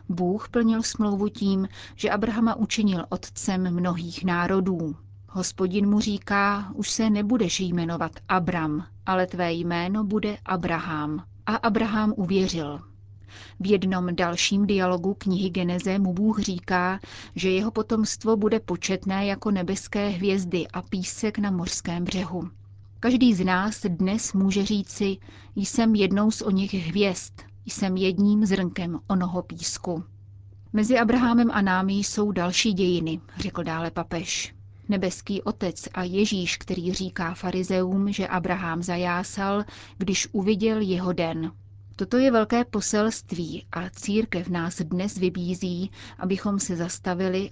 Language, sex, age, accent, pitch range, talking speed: Czech, female, 30-49, native, 175-205 Hz, 130 wpm